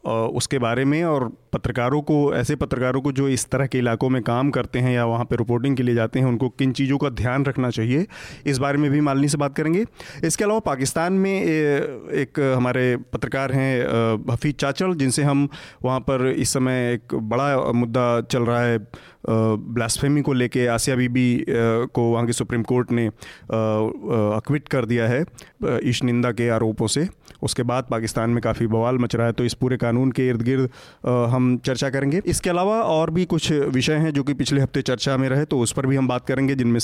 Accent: native